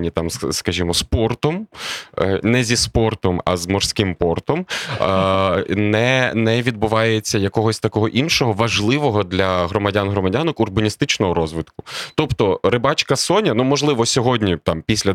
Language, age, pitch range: Ukrainian, 20-39, 95-115 Hz